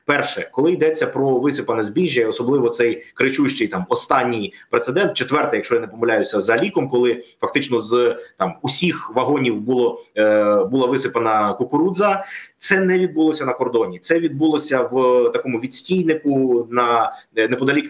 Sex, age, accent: male, 20-39, native